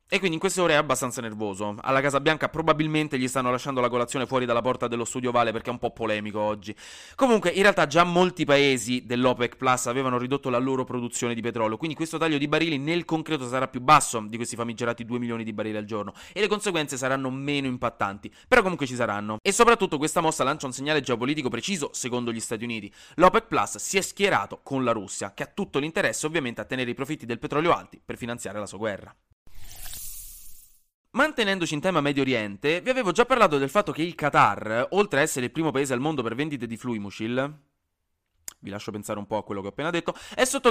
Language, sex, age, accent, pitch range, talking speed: Italian, male, 20-39, native, 120-170 Hz, 220 wpm